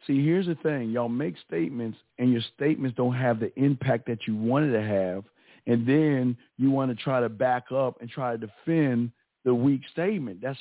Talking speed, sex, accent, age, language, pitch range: 205 wpm, male, American, 50-69, English, 130-170 Hz